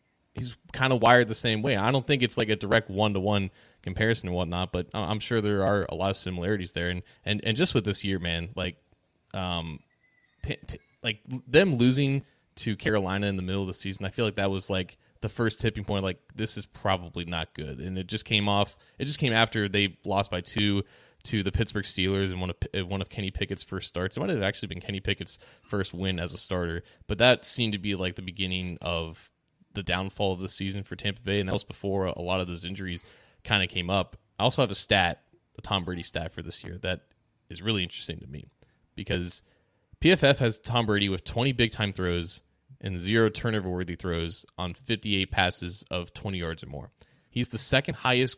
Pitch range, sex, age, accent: 90-115 Hz, male, 20-39, American